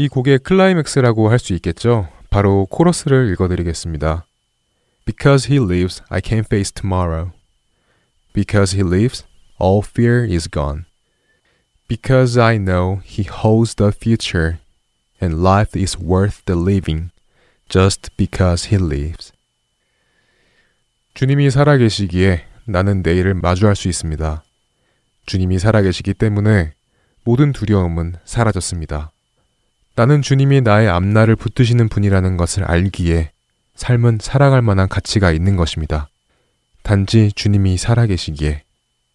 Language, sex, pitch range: Korean, male, 90-115 Hz